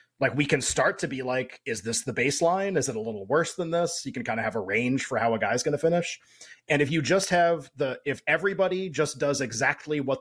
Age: 30-49